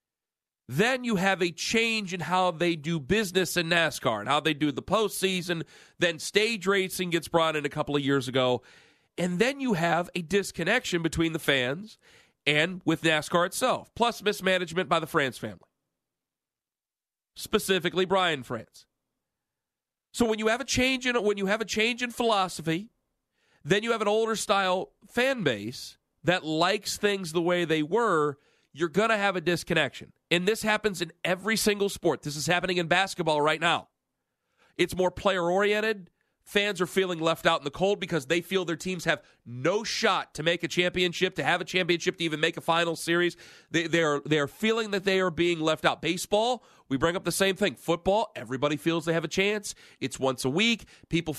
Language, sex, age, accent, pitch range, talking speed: English, male, 40-59, American, 160-200 Hz, 190 wpm